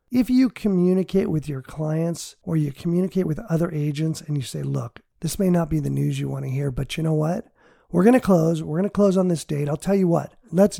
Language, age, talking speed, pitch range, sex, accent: English, 40-59, 255 wpm, 145-195 Hz, male, American